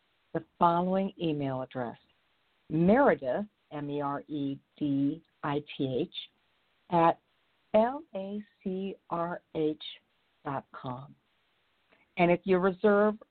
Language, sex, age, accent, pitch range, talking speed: English, female, 50-69, American, 150-195 Hz, 85 wpm